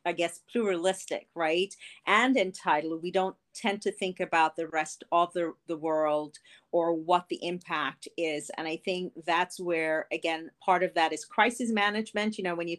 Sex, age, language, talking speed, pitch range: female, 40-59, English, 185 wpm, 160-190 Hz